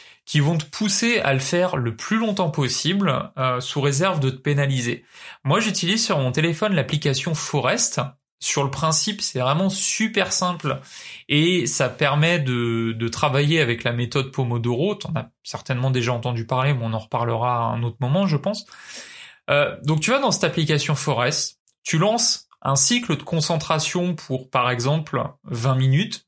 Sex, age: male, 20-39